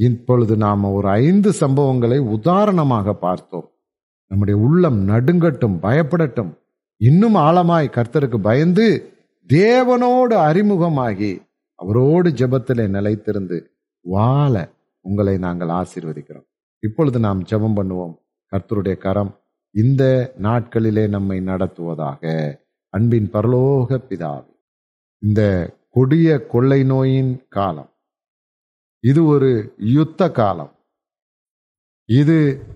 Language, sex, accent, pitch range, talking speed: Tamil, male, native, 100-155 Hz, 85 wpm